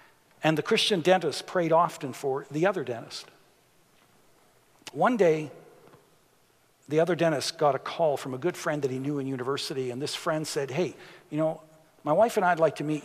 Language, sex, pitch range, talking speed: English, male, 135-175 Hz, 195 wpm